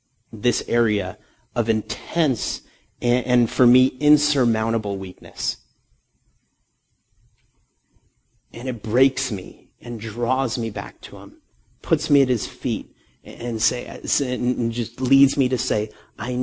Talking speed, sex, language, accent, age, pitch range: 125 wpm, male, English, American, 30-49, 110-125 Hz